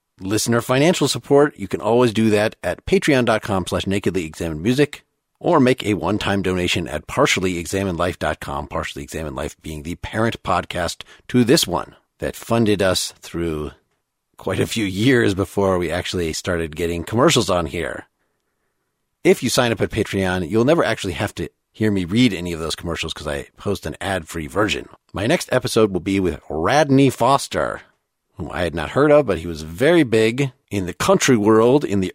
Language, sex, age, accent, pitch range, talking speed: English, male, 40-59, American, 90-125 Hz, 170 wpm